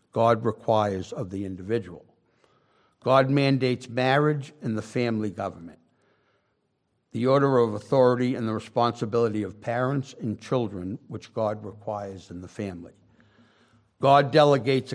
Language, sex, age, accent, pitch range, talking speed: English, male, 60-79, American, 105-130 Hz, 125 wpm